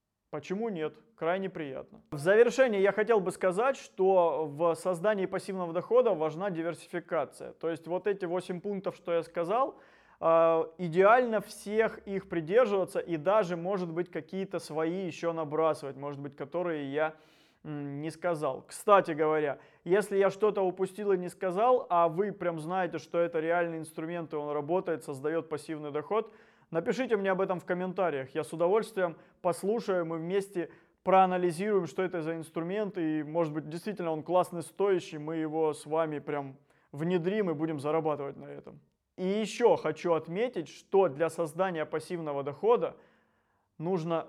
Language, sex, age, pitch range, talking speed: Russian, male, 20-39, 155-190 Hz, 150 wpm